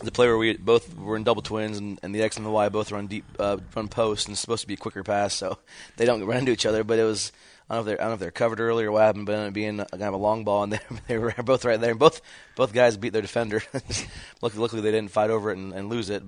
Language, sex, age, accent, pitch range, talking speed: English, male, 20-39, American, 95-105 Hz, 330 wpm